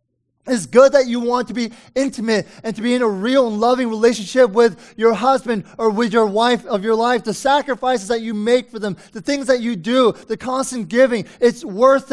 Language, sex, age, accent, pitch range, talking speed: English, male, 20-39, American, 200-245 Hz, 220 wpm